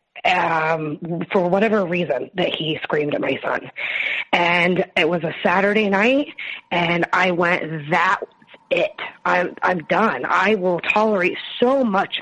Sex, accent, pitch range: female, American, 170-225 Hz